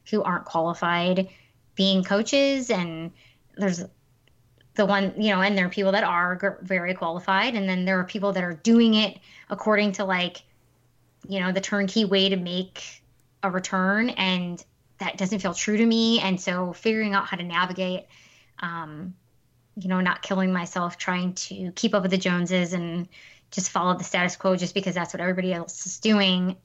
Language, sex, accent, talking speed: English, female, American, 180 wpm